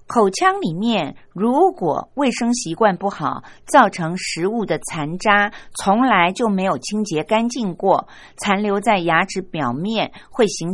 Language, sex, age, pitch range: Chinese, female, 50-69, 155-225 Hz